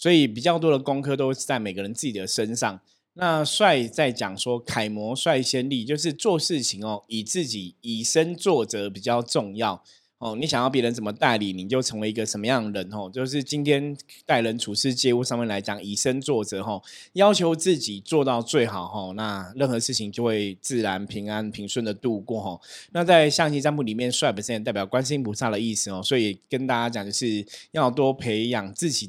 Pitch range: 110-145 Hz